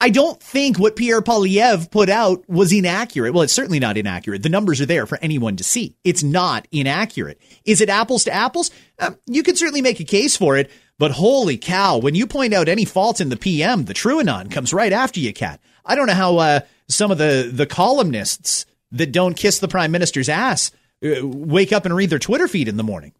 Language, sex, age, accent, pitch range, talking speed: English, male, 30-49, American, 150-225 Hz, 225 wpm